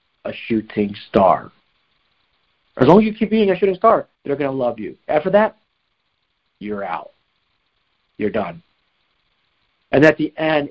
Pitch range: 120-165 Hz